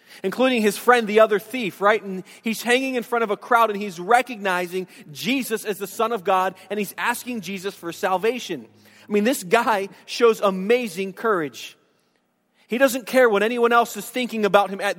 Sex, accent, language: male, American, English